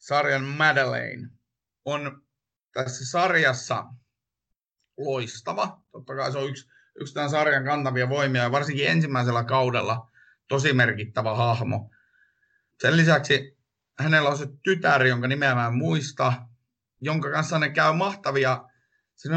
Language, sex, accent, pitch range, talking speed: Finnish, male, native, 120-150 Hz, 120 wpm